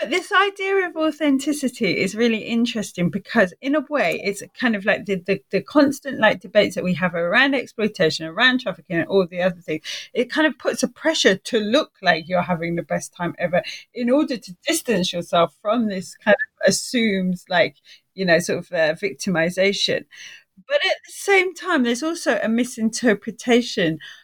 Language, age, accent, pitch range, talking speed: English, 30-49, British, 190-265 Hz, 185 wpm